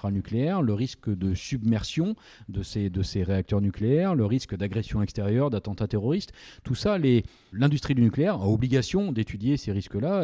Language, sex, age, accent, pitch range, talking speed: French, male, 40-59, French, 100-135 Hz, 165 wpm